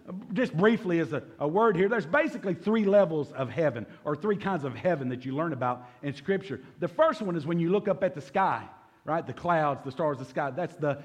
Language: English